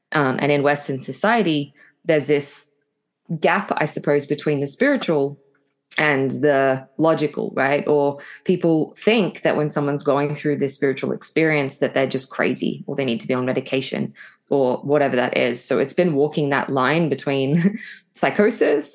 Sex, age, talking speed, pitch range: female, 20-39, 160 wpm, 135-160 Hz